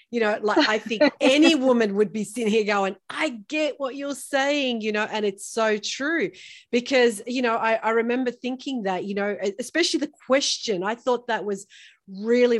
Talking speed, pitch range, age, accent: 195 wpm, 195-250 Hz, 40-59, Australian